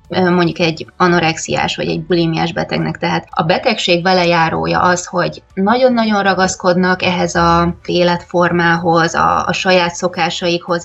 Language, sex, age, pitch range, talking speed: Hungarian, female, 20-39, 170-190 Hz, 120 wpm